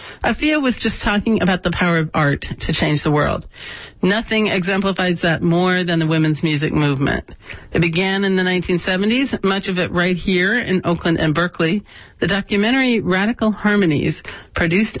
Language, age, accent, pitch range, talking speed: English, 40-59, American, 165-195 Hz, 165 wpm